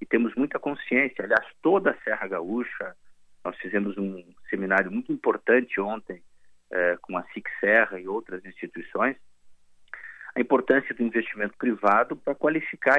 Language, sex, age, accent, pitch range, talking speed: Portuguese, male, 40-59, Brazilian, 95-125 Hz, 145 wpm